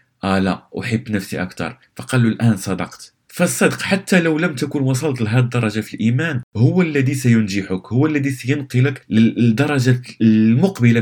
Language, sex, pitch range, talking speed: Arabic, male, 105-130 Hz, 145 wpm